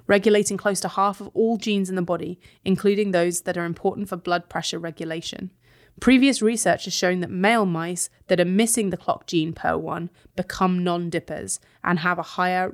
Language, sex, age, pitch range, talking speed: English, female, 20-39, 170-205 Hz, 185 wpm